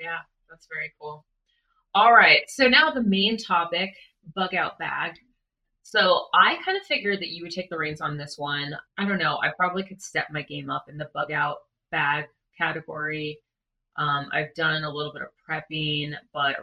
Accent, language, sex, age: American, English, female, 30-49